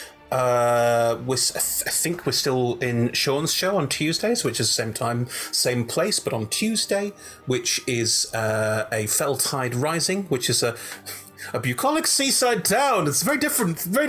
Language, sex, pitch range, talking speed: English, male, 115-145 Hz, 165 wpm